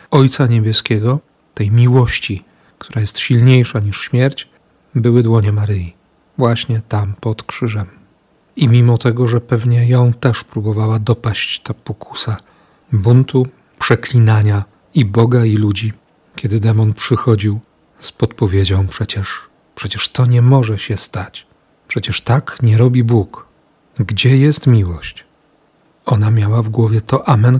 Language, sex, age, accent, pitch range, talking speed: Polish, male, 40-59, native, 105-125 Hz, 130 wpm